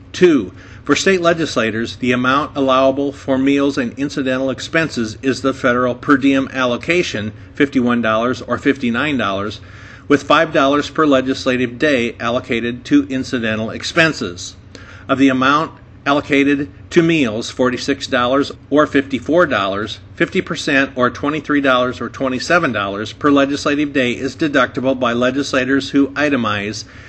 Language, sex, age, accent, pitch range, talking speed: English, male, 50-69, American, 120-145 Hz, 115 wpm